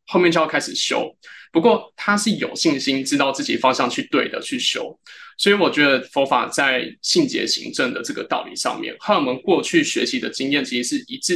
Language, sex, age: Chinese, male, 20-39